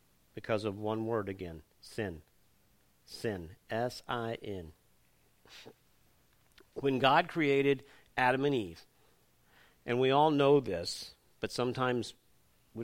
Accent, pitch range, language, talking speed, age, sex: American, 95-135 Hz, English, 105 wpm, 50-69, male